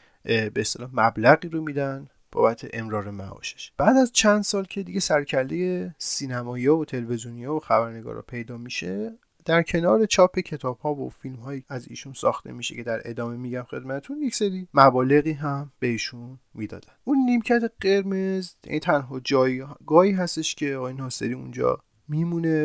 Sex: male